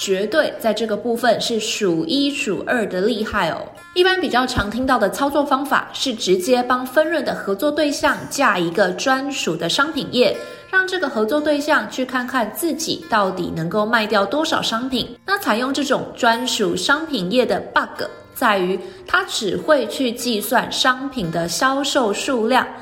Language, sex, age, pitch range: Chinese, female, 20-39, 220-300 Hz